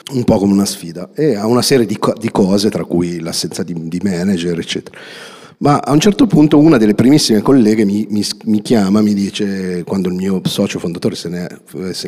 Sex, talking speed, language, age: male, 210 wpm, Italian, 50-69